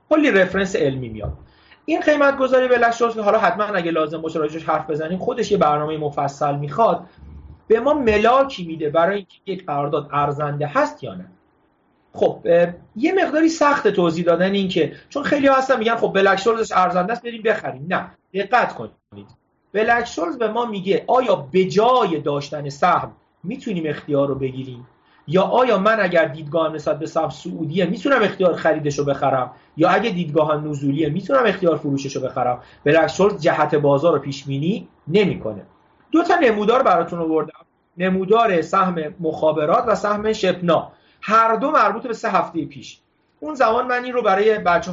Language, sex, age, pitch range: Persian, male, 40-59, 155-220 Hz